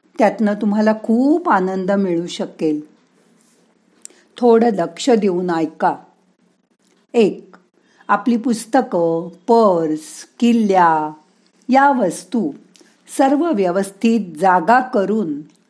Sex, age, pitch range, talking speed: female, 50-69, 180-240 Hz, 80 wpm